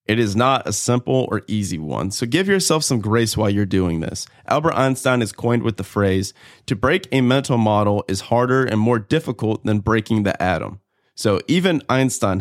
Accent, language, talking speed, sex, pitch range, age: American, English, 200 wpm, male, 105-135 Hz, 30-49